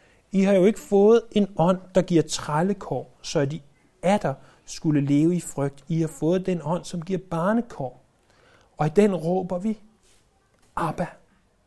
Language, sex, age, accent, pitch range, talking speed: Danish, male, 60-79, native, 130-190 Hz, 165 wpm